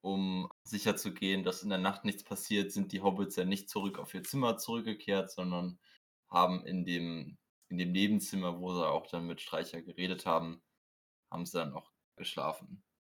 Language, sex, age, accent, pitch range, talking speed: German, male, 20-39, German, 95-120 Hz, 175 wpm